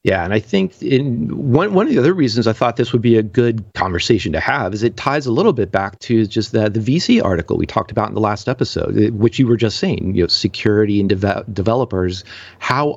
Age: 40-59